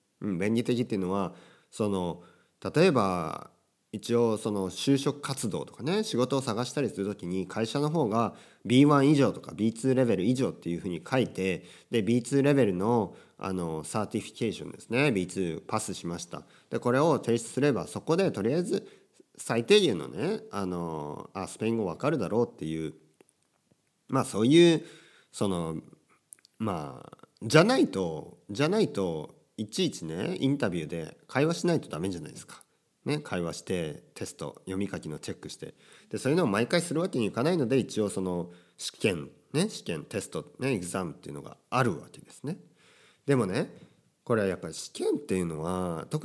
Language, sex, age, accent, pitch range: Japanese, male, 40-59, native, 85-130 Hz